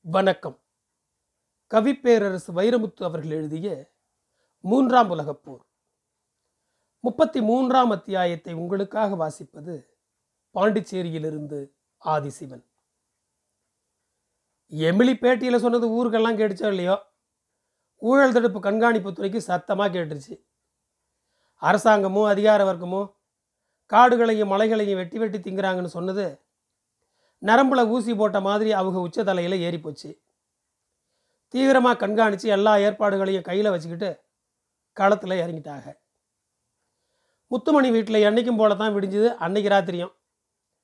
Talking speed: 85 wpm